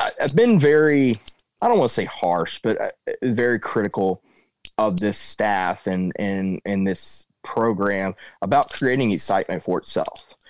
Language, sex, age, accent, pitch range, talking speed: English, male, 30-49, American, 110-180 Hz, 135 wpm